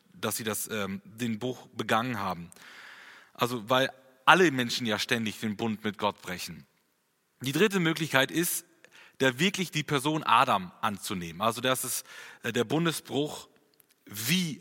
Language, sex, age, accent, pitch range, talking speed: German, male, 30-49, German, 120-170 Hz, 150 wpm